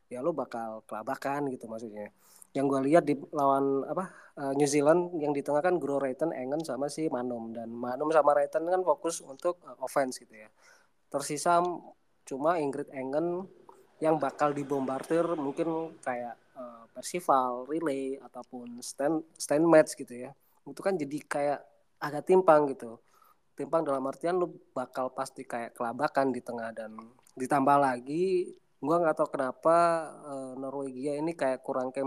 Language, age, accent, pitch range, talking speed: Indonesian, 20-39, native, 130-155 Hz, 150 wpm